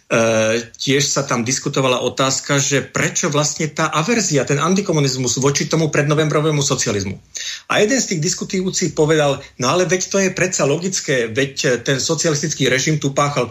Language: Slovak